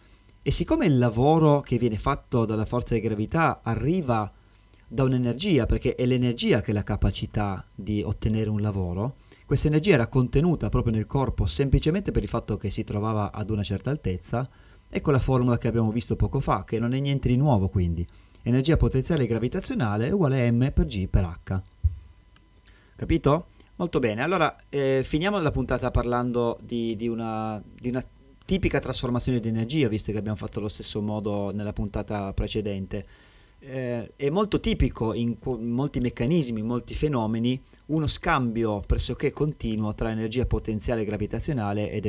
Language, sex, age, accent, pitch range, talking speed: Italian, male, 20-39, native, 105-130 Hz, 165 wpm